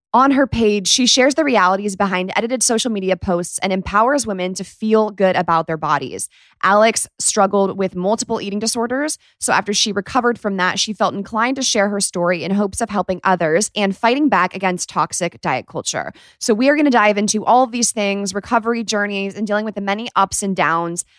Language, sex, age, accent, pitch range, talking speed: English, female, 20-39, American, 185-235 Hz, 205 wpm